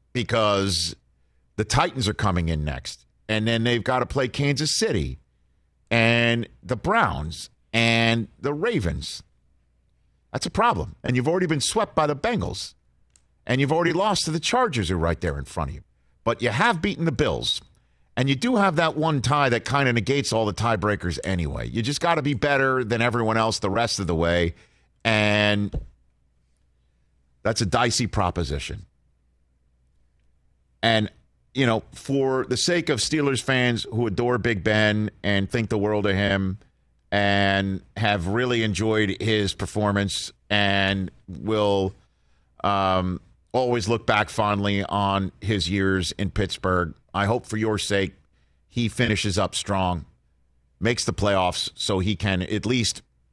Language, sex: English, male